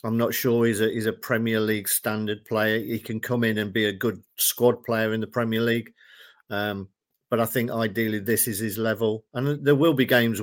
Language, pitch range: English, 105-125 Hz